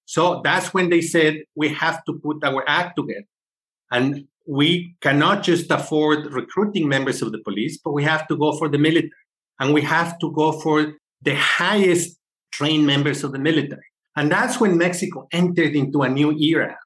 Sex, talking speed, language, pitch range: male, 185 wpm, English, 150-175 Hz